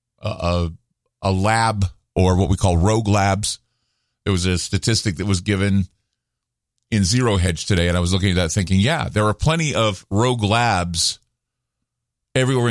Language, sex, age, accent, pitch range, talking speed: English, male, 50-69, American, 105-130 Hz, 165 wpm